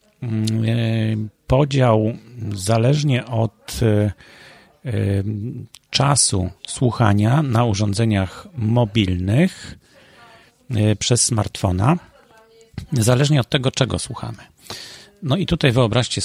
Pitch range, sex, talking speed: 105-130 Hz, male, 70 wpm